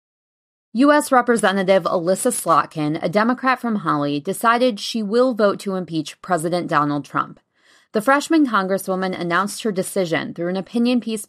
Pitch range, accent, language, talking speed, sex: 165-225 Hz, American, English, 145 wpm, female